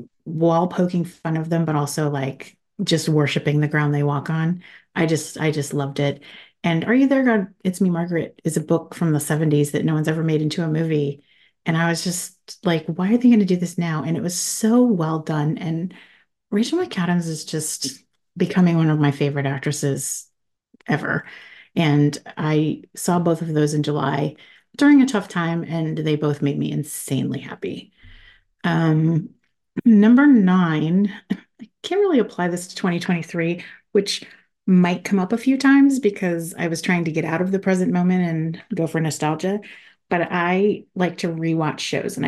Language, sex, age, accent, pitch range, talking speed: English, female, 30-49, American, 155-195 Hz, 185 wpm